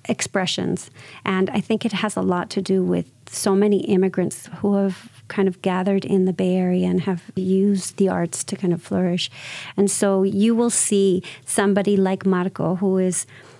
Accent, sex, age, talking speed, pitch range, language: American, female, 40-59, 185 wpm, 170-200 Hz, English